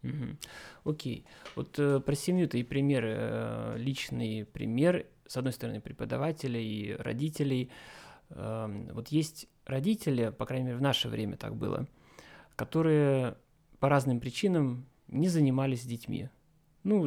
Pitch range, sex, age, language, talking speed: 115-145 Hz, male, 30-49, Russian, 130 wpm